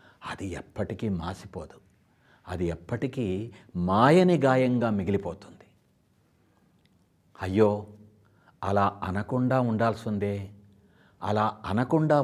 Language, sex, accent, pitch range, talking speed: English, male, Indian, 100-130 Hz, 85 wpm